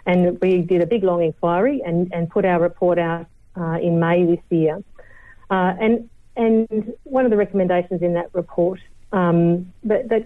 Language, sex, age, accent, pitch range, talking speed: English, female, 40-59, Australian, 170-210 Hz, 180 wpm